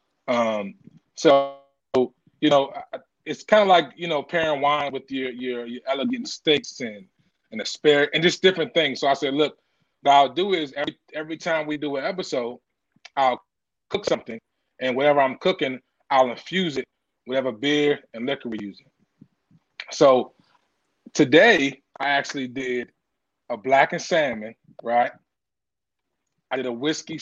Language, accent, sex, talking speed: English, American, male, 155 wpm